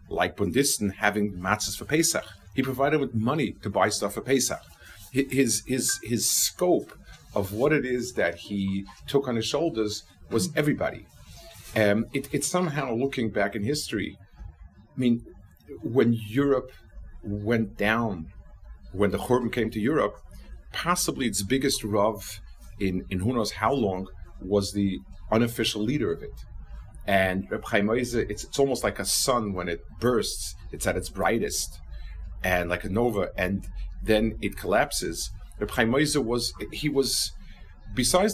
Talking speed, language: 150 wpm, English